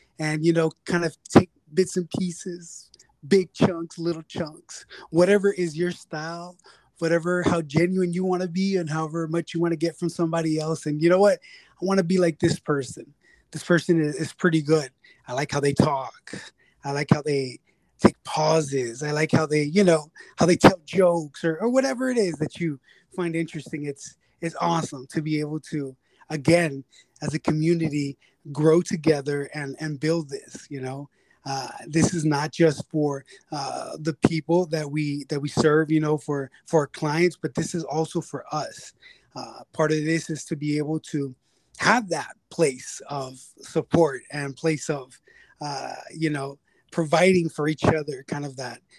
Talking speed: 185 wpm